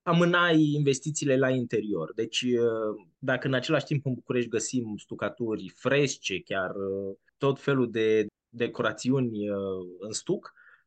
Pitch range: 115-135 Hz